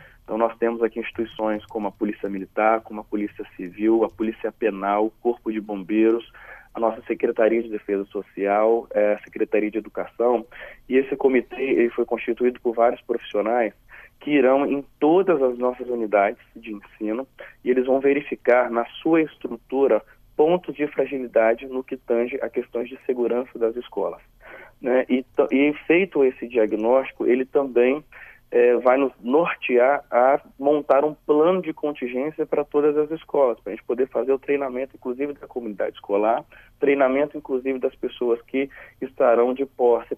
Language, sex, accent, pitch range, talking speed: Portuguese, male, Brazilian, 115-140 Hz, 160 wpm